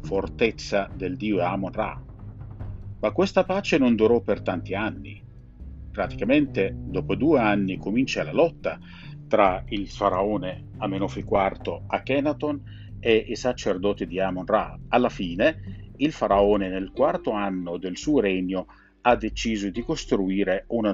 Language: Italian